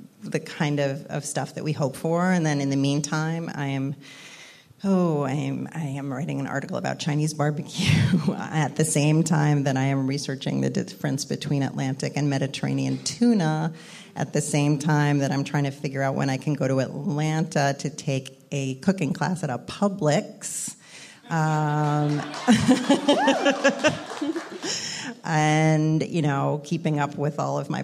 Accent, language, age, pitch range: American, English, 40-59, 140-165 Hz